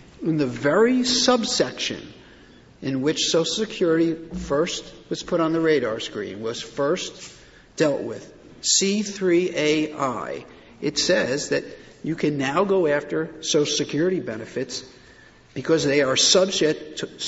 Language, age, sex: English, 50-69, male